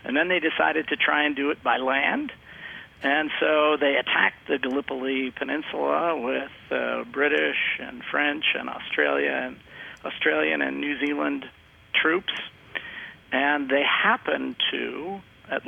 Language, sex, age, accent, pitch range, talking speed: English, male, 50-69, American, 120-145 Hz, 135 wpm